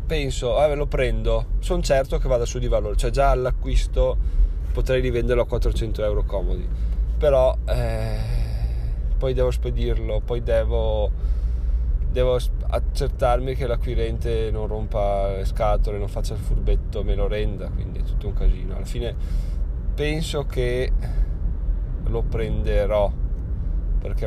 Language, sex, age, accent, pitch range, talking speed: Italian, male, 20-39, native, 85-115 Hz, 135 wpm